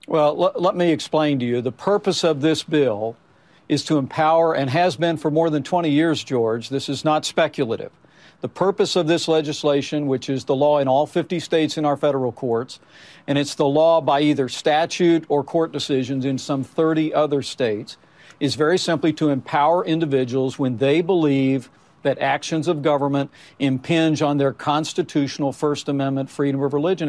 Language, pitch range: English, 145-170 Hz